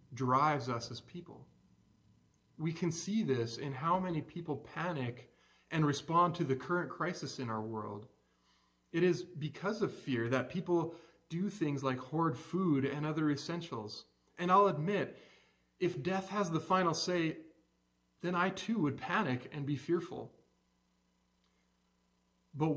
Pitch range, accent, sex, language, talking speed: 115-165 Hz, American, male, English, 145 wpm